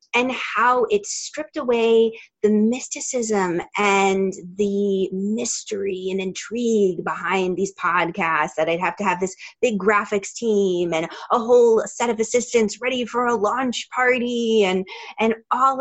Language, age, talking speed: English, 30-49, 145 wpm